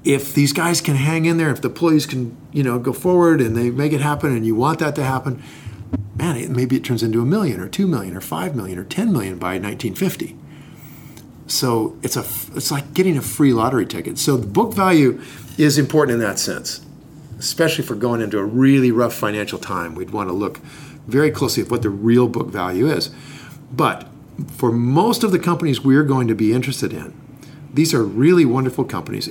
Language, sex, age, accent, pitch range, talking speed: English, male, 50-69, American, 115-150 Hz, 210 wpm